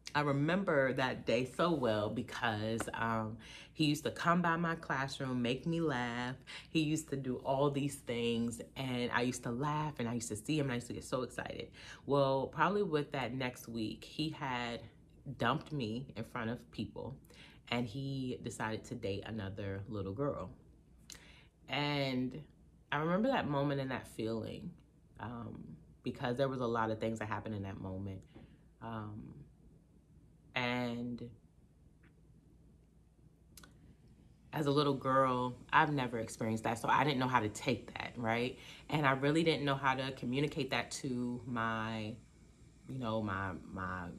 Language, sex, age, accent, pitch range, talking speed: English, female, 30-49, American, 115-140 Hz, 165 wpm